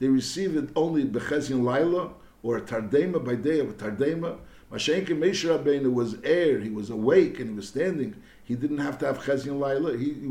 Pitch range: 130-165 Hz